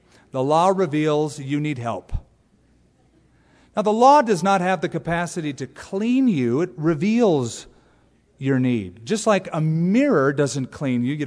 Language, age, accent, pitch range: English, 40-59, American, 120-190 Hz